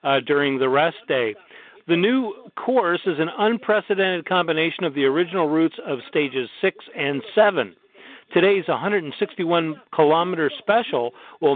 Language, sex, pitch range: English, male, 140-195 Hz